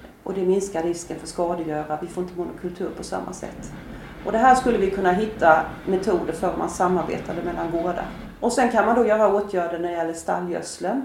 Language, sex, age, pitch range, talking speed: Swedish, female, 40-59, 175-215 Hz, 205 wpm